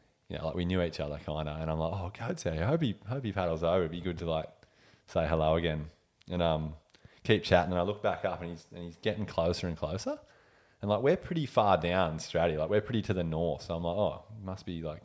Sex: male